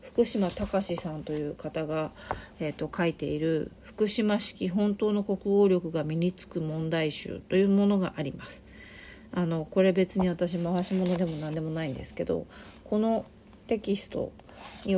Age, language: 40-59, Japanese